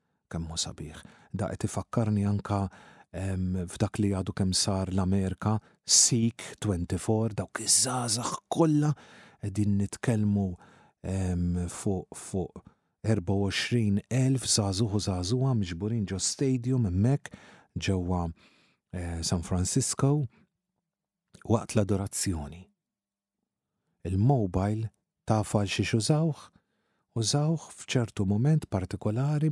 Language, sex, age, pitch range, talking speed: English, male, 50-69, 95-115 Hz, 70 wpm